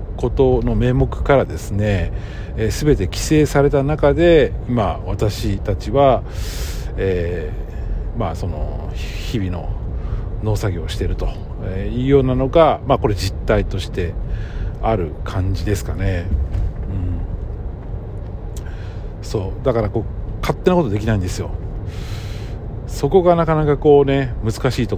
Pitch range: 95-115 Hz